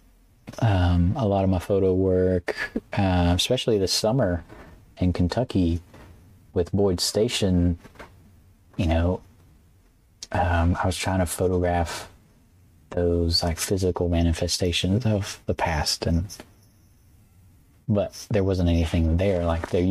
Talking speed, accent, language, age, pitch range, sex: 120 wpm, American, English, 30-49, 85-100 Hz, male